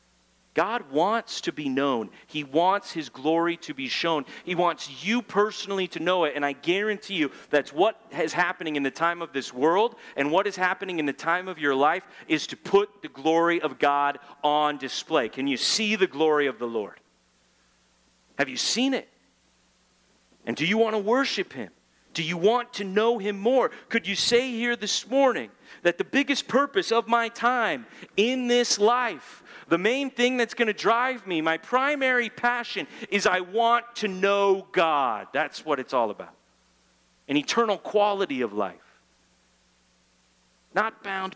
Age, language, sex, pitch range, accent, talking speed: 40-59, English, male, 145-230 Hz, American, 180 wpm